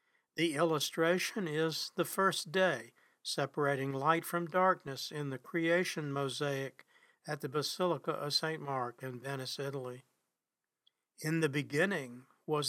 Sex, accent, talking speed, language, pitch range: male, American, 130 wpm, English, 140-175 Hz